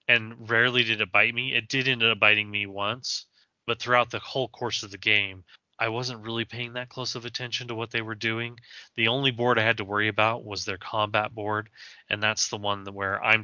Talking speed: 235 wpm